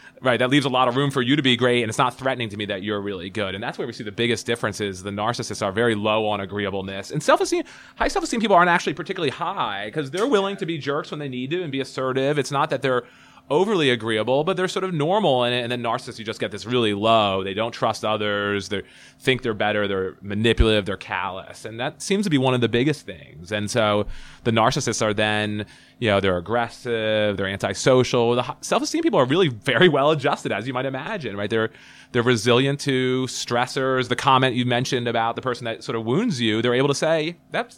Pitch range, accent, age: 105-135 Hz, American, 30-49